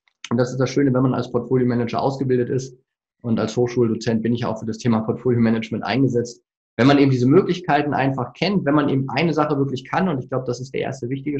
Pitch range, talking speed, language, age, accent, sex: 105-130 Hz, 230 wpm, German, 20-39, German, male